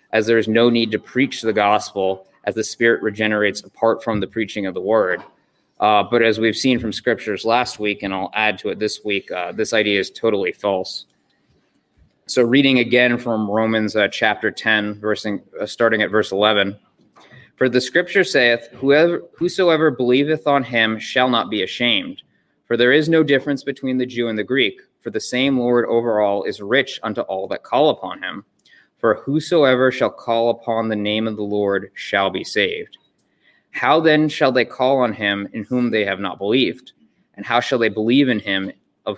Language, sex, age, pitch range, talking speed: English, male, 20-39, 105-130 Hz, 190 wpm